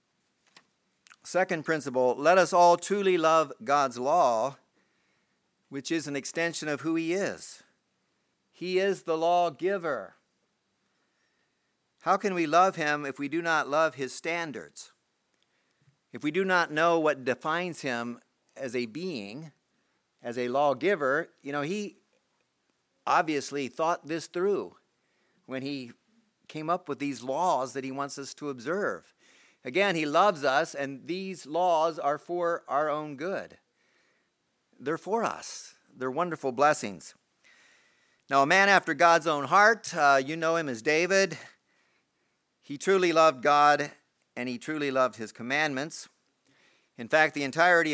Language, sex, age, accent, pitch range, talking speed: English, male, 50-69, American, 140-175 Hz, 140 wpm